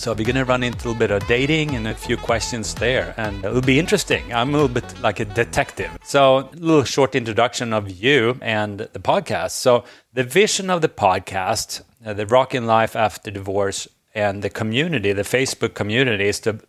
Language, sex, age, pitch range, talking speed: English, male, 30-49, 105-125 Hz, 205 wpm